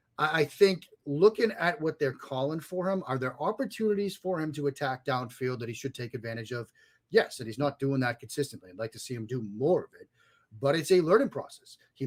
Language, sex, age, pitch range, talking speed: English, male, 30-49, 125-155 Hz, 225 wpm